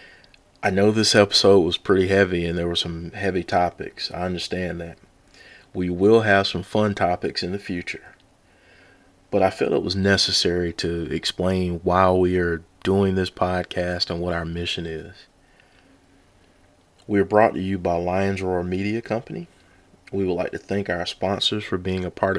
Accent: American